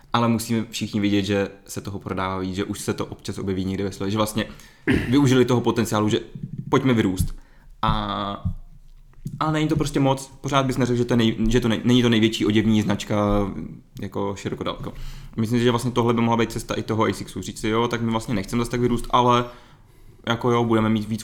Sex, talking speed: male, 210 wpm